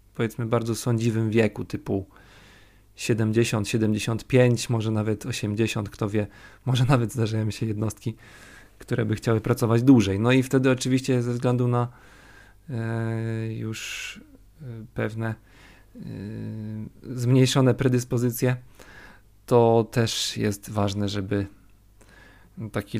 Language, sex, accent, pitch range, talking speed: Polish, male, native, 100-120 Hz, 100 wpm